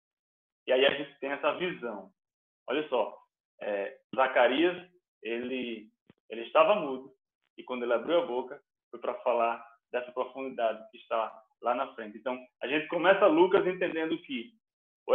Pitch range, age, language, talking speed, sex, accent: 115-155 Hz, 20-39, Portuguese, 155 wpm, male, Brazilian